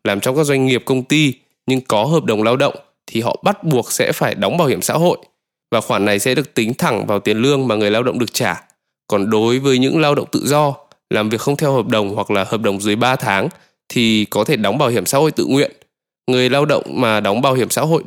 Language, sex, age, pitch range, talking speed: Vietnamese, male, 20-39, 115-150 Hz, 265 wpm